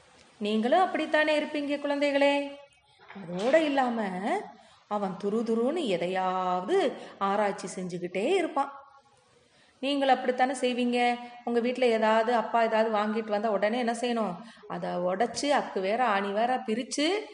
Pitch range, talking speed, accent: 205-270 Hz, 60 wpm, native